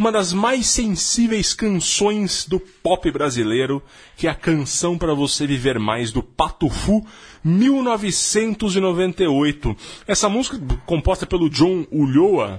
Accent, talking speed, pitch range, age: Brazilian, 130 wpm, 115-175 Hz, 30-49